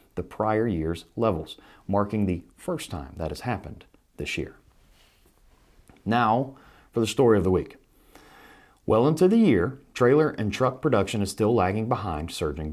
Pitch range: 95-125 Hz